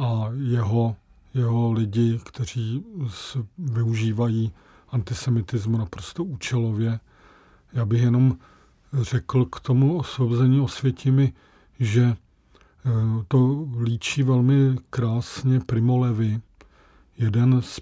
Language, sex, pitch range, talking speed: Czech, male, 115-135 Hz, 90 wpm